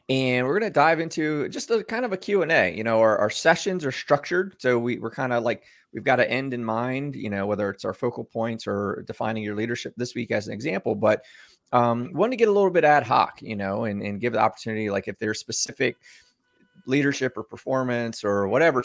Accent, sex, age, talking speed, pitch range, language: American, male, 20-39, 230 wpm, 105-125 Hz, English